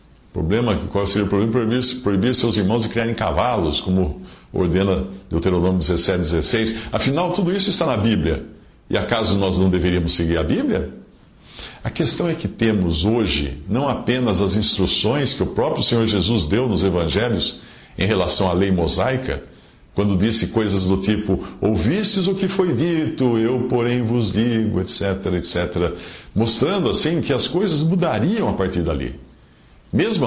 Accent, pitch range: Brazilian, 95-125 Hz